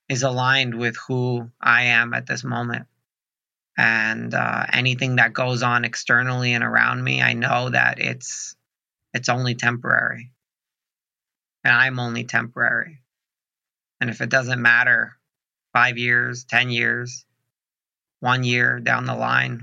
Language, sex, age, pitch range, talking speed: English, male, 40-59, 115-125 Hz, 135 wpm